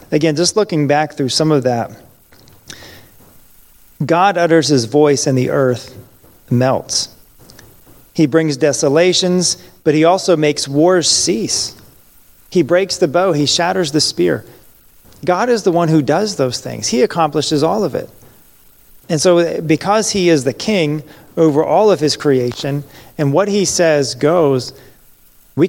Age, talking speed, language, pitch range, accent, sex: 40-59, 150 wpm, English, 135-170 Hz, American, male